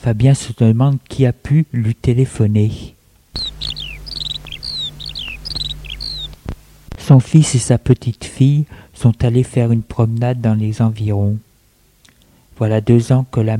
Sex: male